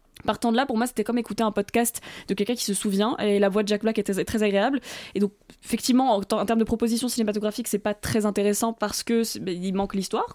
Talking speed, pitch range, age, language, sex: 250 wpm, 210-245 Hz, 20-39, French, female